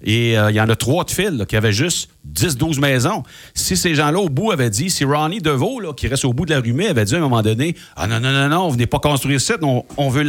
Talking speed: 310 wpm